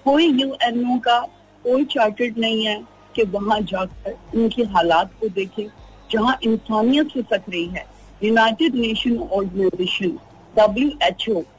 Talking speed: 125 wpm